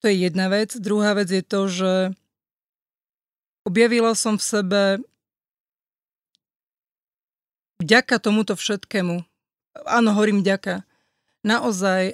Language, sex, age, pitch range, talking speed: Slovak, female, 40-59, 190-215 Hz, 100 wpm